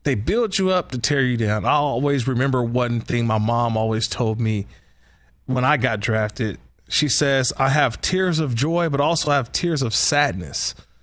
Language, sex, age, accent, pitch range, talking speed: English, male, 20-39, American, 115-155 Hz, 195 wpm